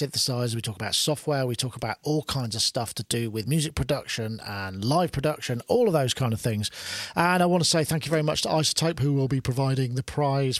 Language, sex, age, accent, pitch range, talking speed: English, male, 40-59, British, 140-185 Hz, 240 wpm